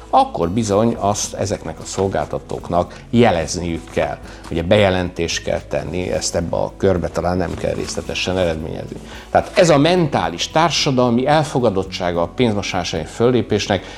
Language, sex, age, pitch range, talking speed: Hungarian, male, 60-79, 90-115 Hz, 130 wpm